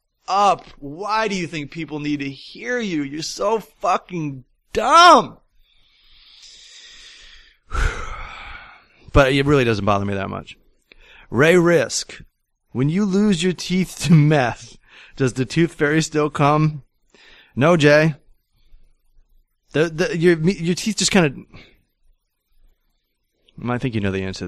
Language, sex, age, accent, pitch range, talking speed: English, male, 30-49, American, 125-175 Hz, 130 wpm